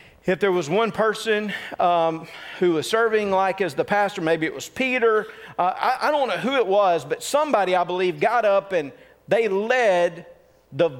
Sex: male